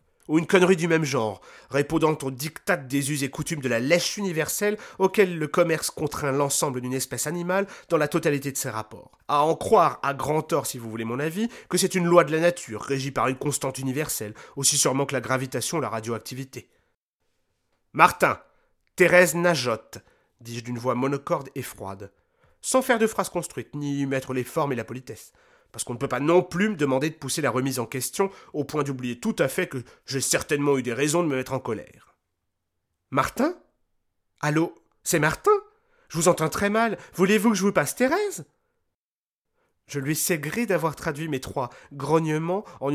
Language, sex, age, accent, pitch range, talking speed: French, male, 30-49, French, 130-175 Hz, 195 wpm